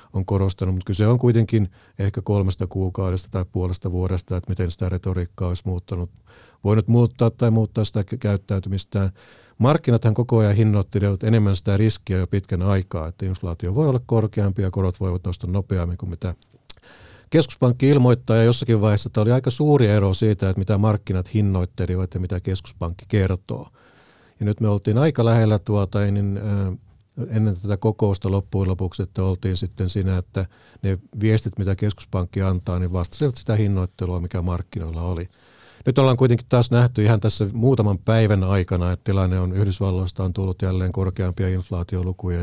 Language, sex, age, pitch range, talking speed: Finnish, male, 50-69, 95-110 Hz, 160 wpm